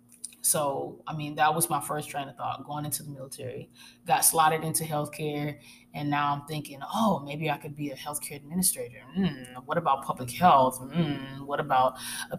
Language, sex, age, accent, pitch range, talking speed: English, female, 20-39, American, 145-180 Hz, 190 wpm